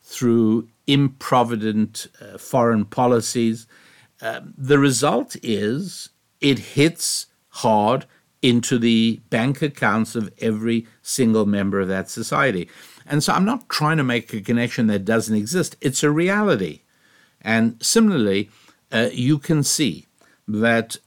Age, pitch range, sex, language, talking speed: 60-79, 105-135 Hz, male, English, 130 wpm